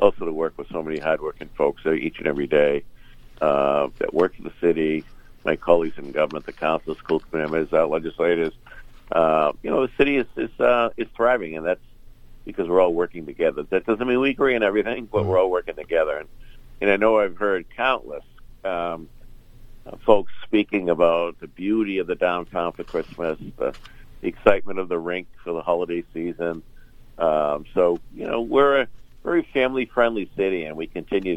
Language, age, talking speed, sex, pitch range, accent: English, 60-79, 185 wpm, male, 80-115 Hz, American